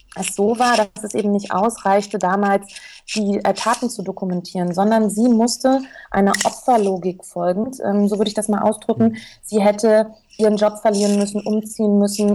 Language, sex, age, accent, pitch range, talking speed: German, female, 30-49, German, 195-220 Hz, 170 wpm